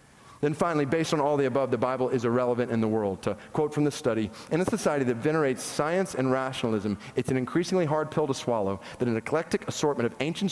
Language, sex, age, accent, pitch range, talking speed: English, male, 40-59, American, 130-170 Hz, 230 wpm